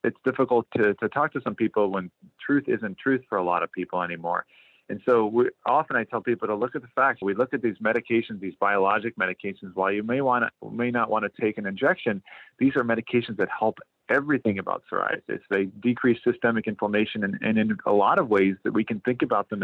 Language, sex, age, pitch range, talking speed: English, male, 40-59, 100-120 Hz, 225 wpm